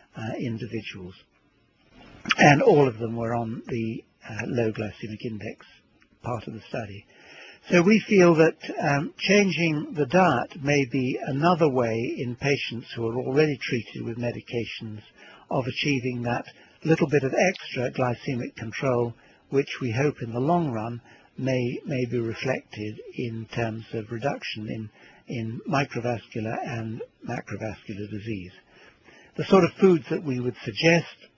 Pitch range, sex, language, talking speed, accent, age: 115-140 Hz, male, English, 145 wpm, British, 60-79